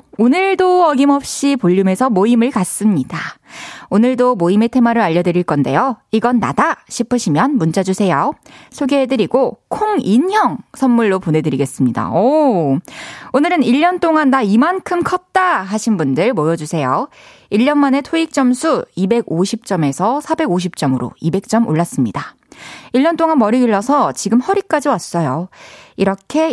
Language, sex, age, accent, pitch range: Korean, female, 20-39, native, 175-255 Hz